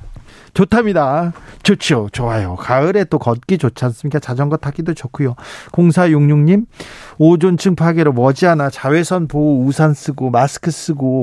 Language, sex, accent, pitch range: Korean, male, native, 130-170 Hz